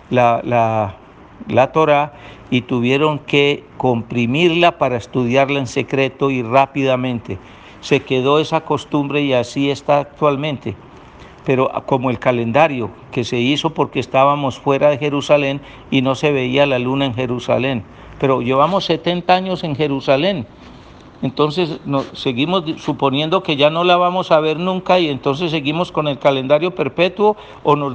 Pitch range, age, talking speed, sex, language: 130-160 Hz, 60-79, 150 wpm, male, Spanish